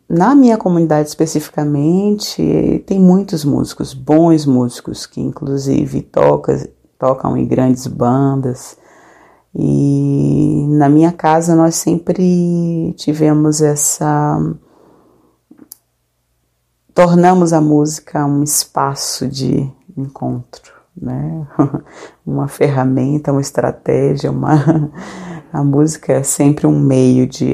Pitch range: 130-155 Hz